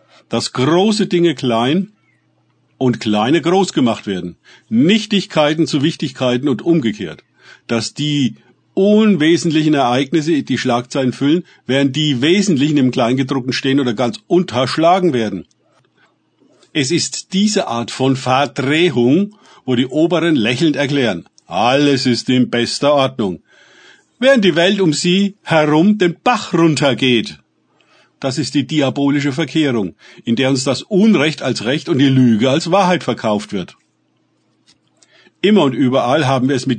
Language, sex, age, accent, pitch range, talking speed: German, male, 50-69, German, 125-165 Hz, 135 wpm